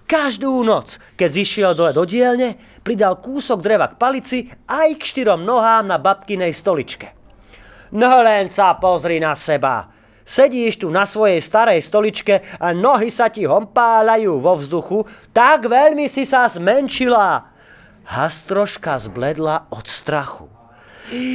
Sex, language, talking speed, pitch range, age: male, Slovak, 130 wpm, 165-245 Hz, 30-49